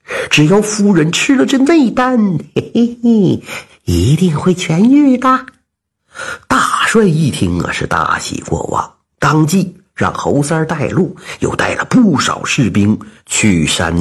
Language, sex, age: Chinese, male, 50-69